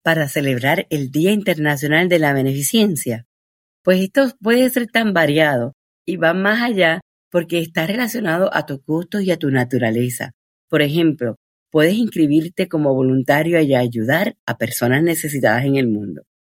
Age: 50-69